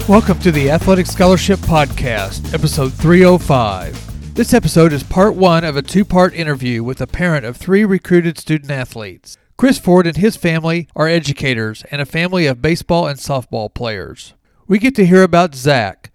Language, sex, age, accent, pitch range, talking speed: English, male, 40-59, American, 135-180 Hz, 170 wpm